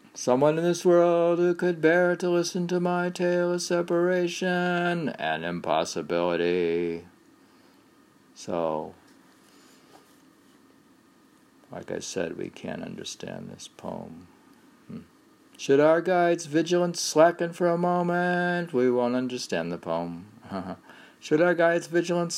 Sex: male